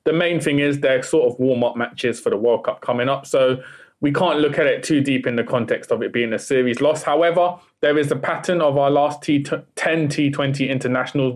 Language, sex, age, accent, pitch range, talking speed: English, male, 20-39, British, 125-150 Hz, 225 wpm